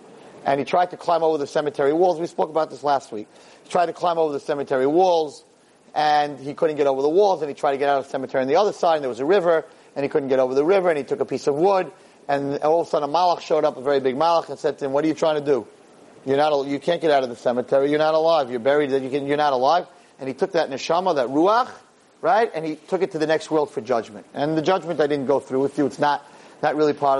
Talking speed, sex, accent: 300 wpm, male, American